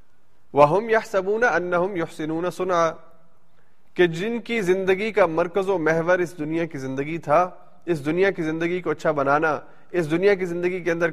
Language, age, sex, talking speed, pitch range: Urdu, 30-49, male, 175 wpm, 145-185 Hz